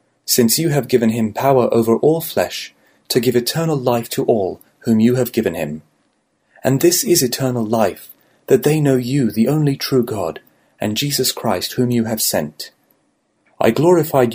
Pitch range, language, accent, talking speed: 110-135 Hz, Ukrainian, British, 175 wpm